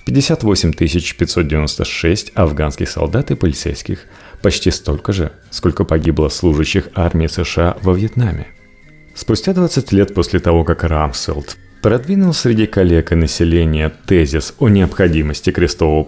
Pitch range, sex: 80-115 Hz, male